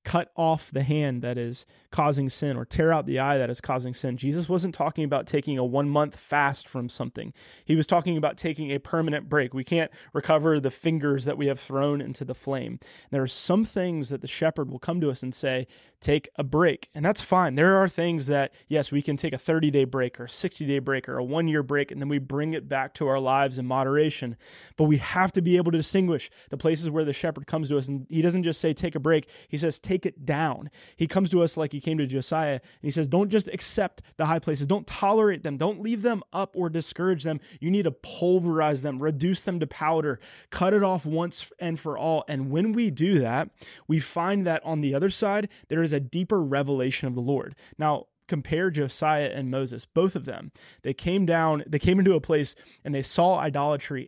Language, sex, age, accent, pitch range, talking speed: English, male, 20-39, American, 140-170 Hz, 235 wpm